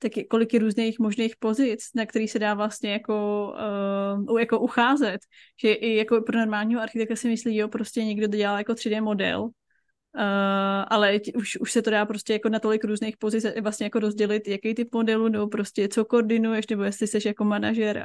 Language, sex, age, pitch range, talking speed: Czech, female, 20-39, 210-230 Hz, 195 wpm